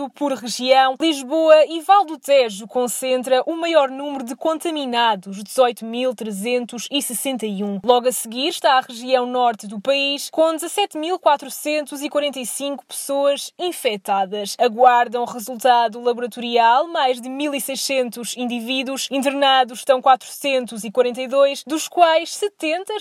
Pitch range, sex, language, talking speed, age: 245-280 Hz, female, English, 105 wpm, 20-39